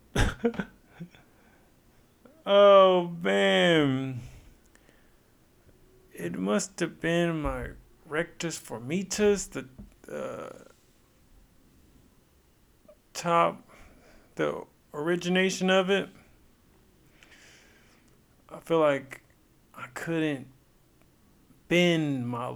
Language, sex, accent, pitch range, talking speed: English, male, American, 130-180 Hz, 60 wpm